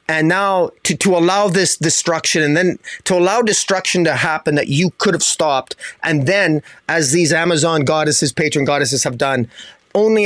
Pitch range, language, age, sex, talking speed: 145-180 Hz, English, 30-49, male, 175 wpm